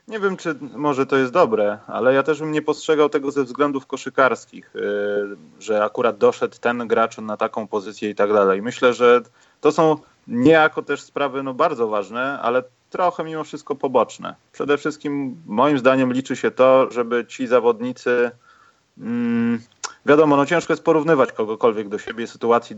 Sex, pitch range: male, 110-155 Hz